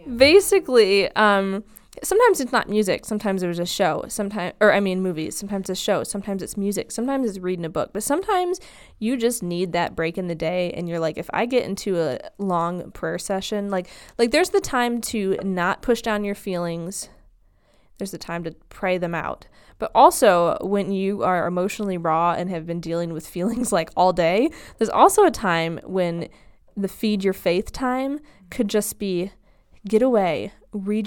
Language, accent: English, American